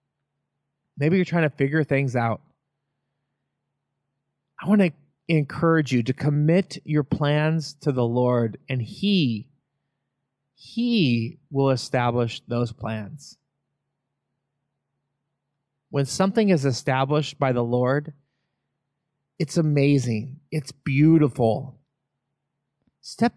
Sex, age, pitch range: male, 30-49, 130-150 Hz